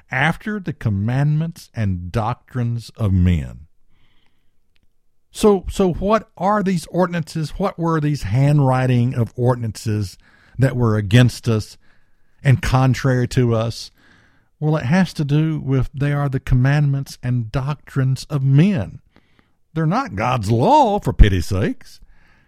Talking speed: 130 wpm